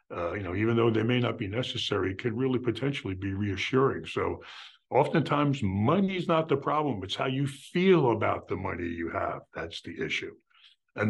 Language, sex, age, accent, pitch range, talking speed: English, male, 60-79, American, 105-135 Hz, 190 wpm